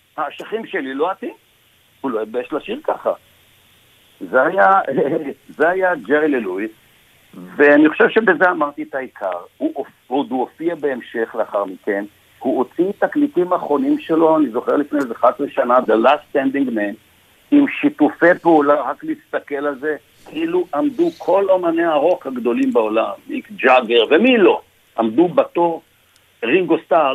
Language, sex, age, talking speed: Hebrew, male, 60-79, 145 wpm